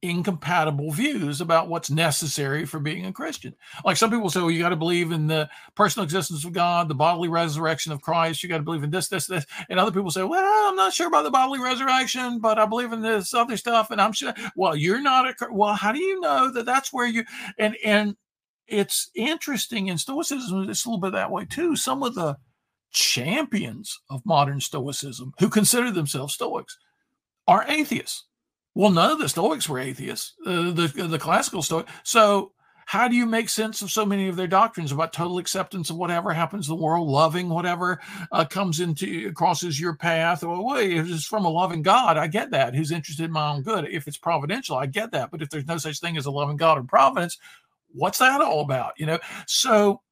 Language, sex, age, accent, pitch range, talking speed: English, male, 50-69, American, 165-225 Hz, 215 wpm